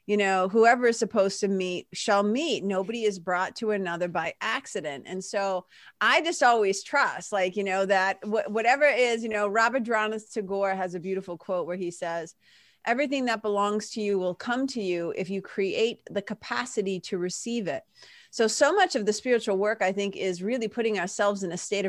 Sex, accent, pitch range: female, American, 190-240 Hz